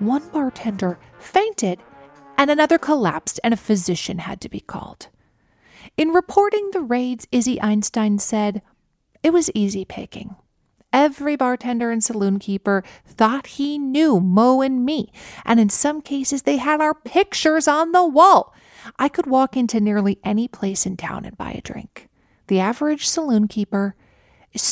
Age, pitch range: 40-59, 200-280 Hz